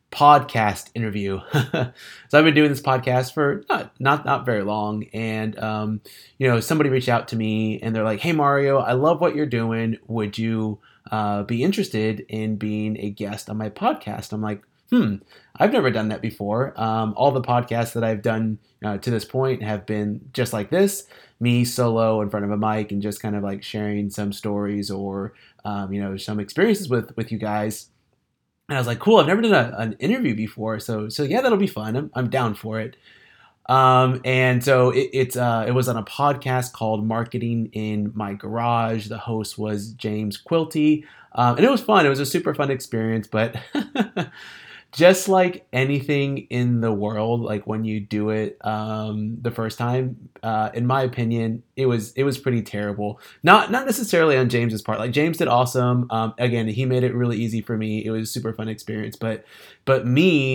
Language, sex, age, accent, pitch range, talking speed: English, male, 20-39, American, 110-130 Hz, 200 wpm